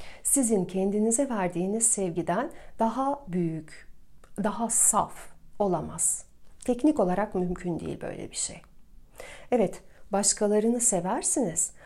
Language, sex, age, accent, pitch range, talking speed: Turkish, female, 40-59, native, 210-280 Hz, 95 wpm